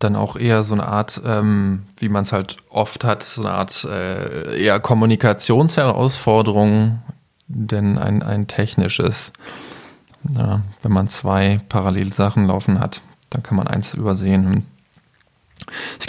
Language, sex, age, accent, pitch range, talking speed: German, male, 20-39, German, 105-125 Hz, 140 wpm